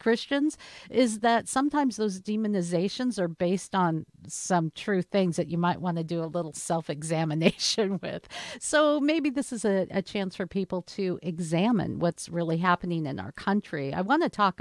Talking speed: 175 wpm